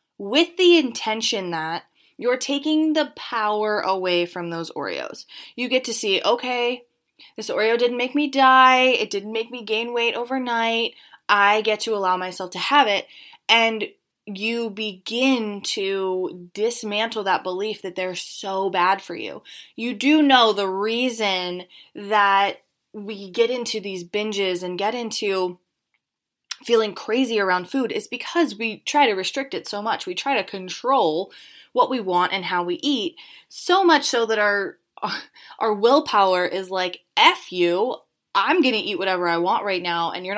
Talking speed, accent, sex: 165 wpm, American, female